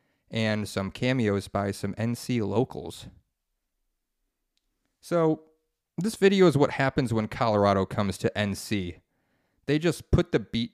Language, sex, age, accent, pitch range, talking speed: English, male, 30-49, American, 105-130 Hz, 130 wpm